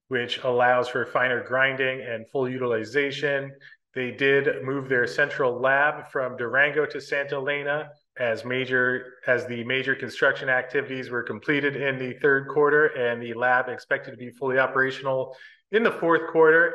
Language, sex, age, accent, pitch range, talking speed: English, male, 30-49, American, 130-145 Hz, 160 wpm